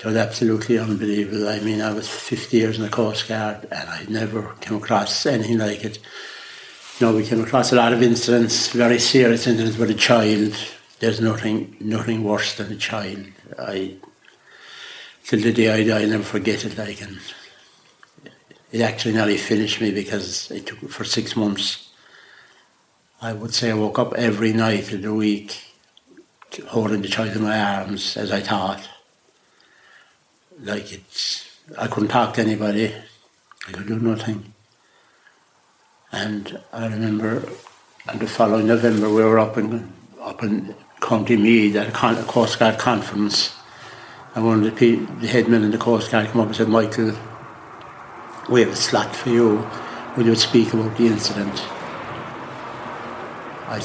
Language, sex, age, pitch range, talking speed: English, male, 60-79, 105-115 Hz, 160 wpm